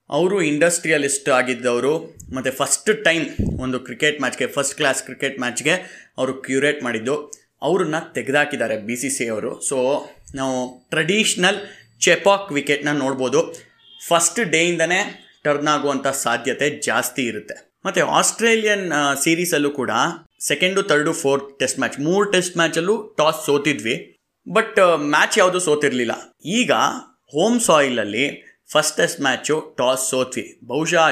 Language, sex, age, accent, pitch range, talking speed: Kannada, male, 20-39, native, 130-165 Hz, 120 wpm